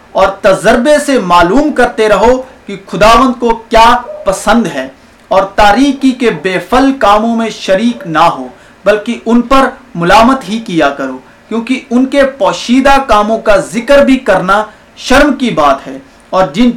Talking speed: 155 wpm